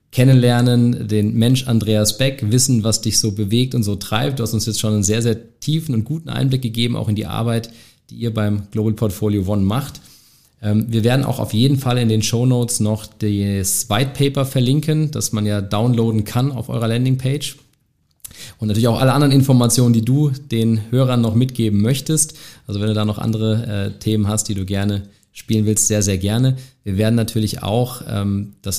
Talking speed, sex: 195 wpm, male